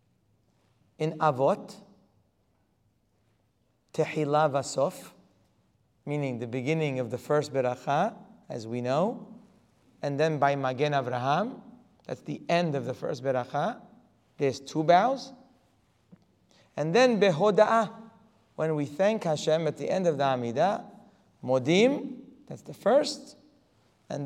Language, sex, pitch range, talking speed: English, male, 130-200 Hz, 115 wpm